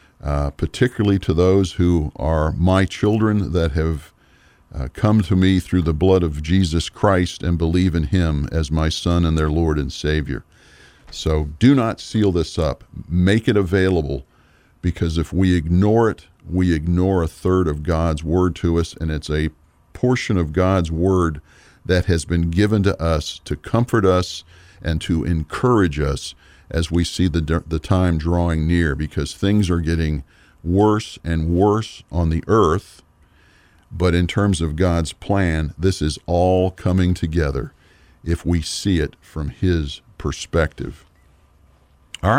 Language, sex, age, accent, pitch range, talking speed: English, male, 50-69, American, 80-95 Hz, 160 wpm